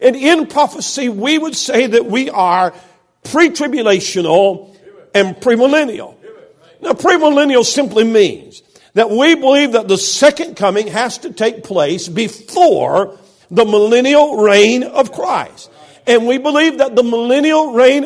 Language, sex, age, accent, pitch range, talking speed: English, male, 50-69, American, 220-295 Hz, 135 wpm